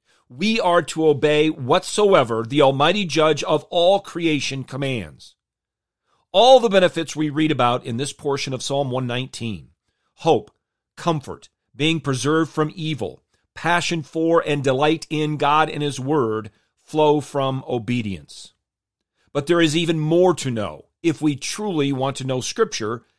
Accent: American